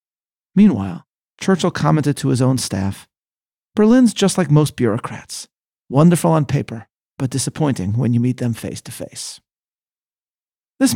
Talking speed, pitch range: 135 wpm, 120-165 Hz